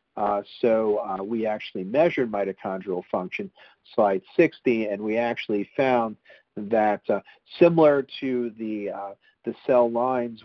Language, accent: English, American